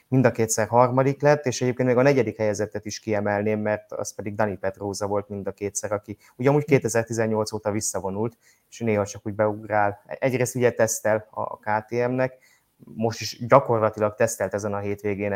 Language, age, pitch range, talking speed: Hungarian, 20-39, 105-125 Hz, 170 wpm